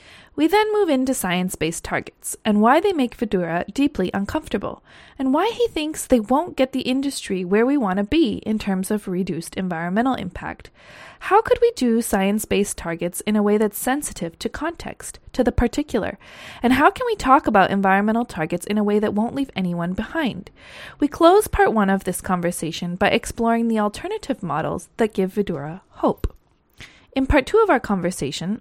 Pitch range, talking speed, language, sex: 190-285 Hz, 185 wpm, English, female